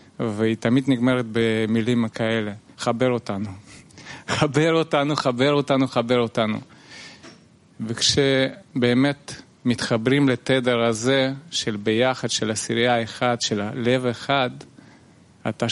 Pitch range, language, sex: 115-130 Hz, Italian, male